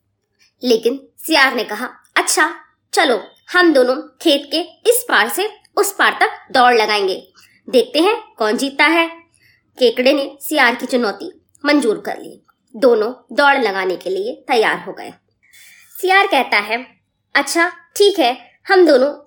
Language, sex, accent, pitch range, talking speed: Hindi, male, native, 260-360 Hz, 145 wpm